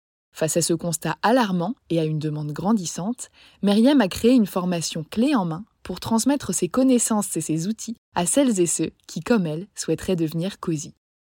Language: French